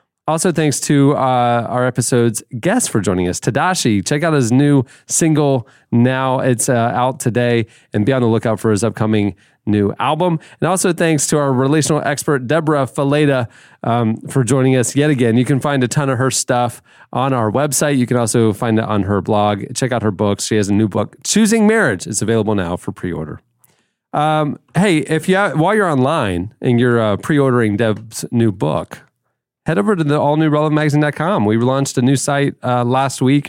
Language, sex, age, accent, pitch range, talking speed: English, male, 30-49, American, 105-140 Hz, 195 wpm